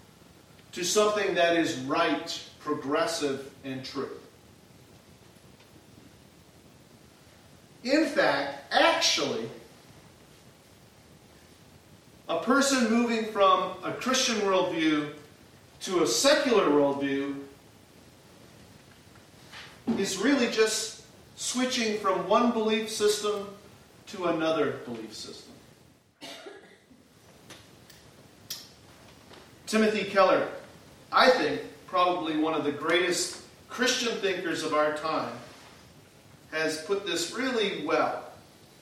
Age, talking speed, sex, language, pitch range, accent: 40-59, 80 wpm, male, English, 170-225 Hz, American